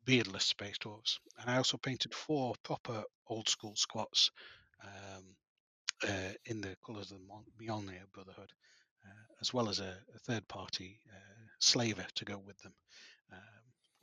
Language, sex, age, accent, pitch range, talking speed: English, male, 30-49, British, 100-120 Hz, 150 wpm